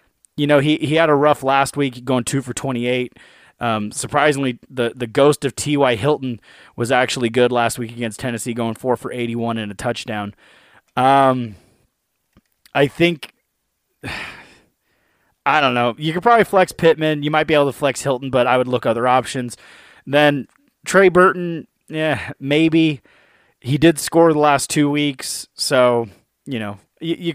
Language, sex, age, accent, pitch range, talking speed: English, male, 30-49, American, 120-150 Hz, 165 wpm